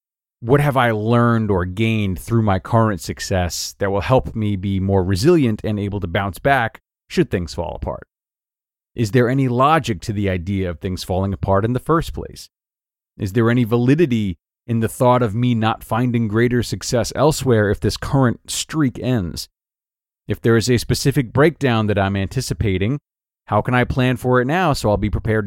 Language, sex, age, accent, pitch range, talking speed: English, male, 30-49, American, 100-125 Hz, 190 wpm